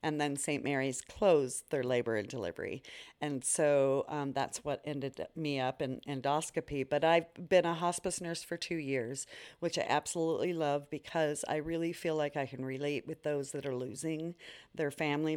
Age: 40-59